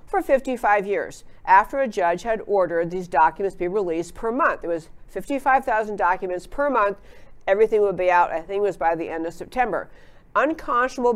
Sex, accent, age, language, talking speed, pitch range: female, American, 50-69, English, 185 wpm, 175-250 Hz